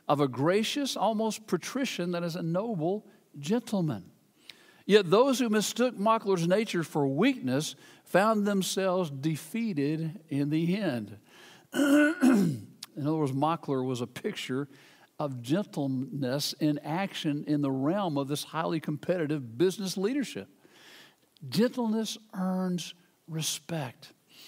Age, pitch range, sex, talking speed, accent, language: 60-79, 150-215 Hz, male, 115 wpm, American, English